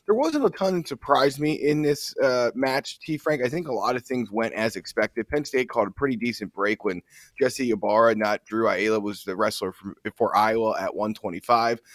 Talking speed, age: 210 wpm, 20-39